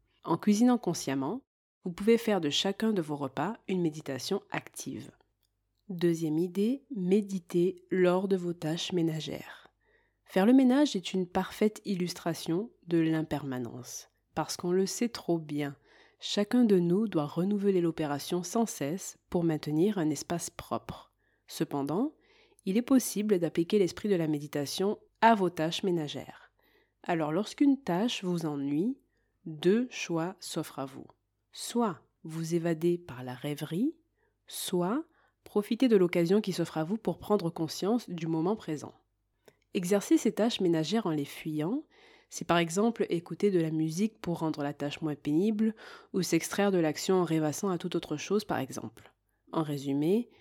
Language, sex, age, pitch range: French, female, 30-49, 160-210 Hz